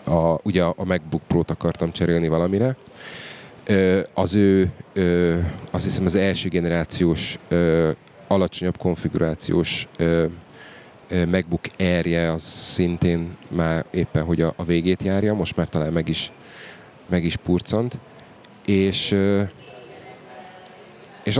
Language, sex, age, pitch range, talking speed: Hungarian, male, 30-49, 85-100 Hz, 100 wpm